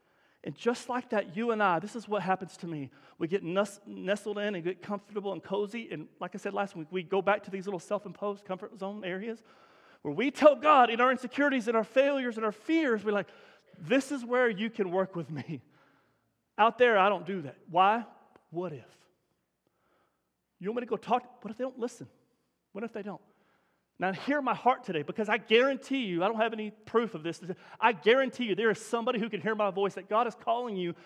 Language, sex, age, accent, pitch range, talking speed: English, male, 40-59, American, 180-235 Hz, 225 wpm